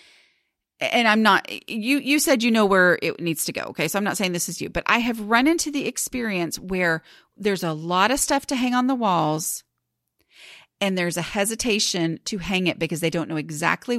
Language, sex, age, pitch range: English, female, 30-49, 165-230 Hz